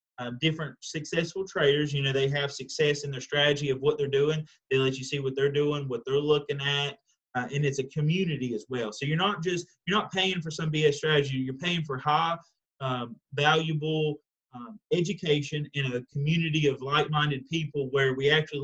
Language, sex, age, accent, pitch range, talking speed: English, male, 30-49, American, 140-160 Hz, 200 wpm